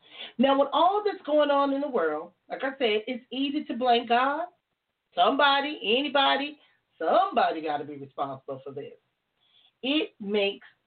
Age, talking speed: 40-59, 160 wpm